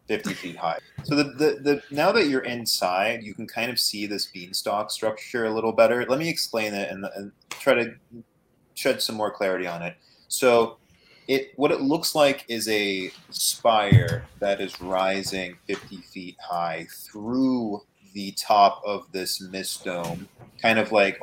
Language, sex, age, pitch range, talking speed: English, male, 30-49, 95-120 Hz, 170 wpm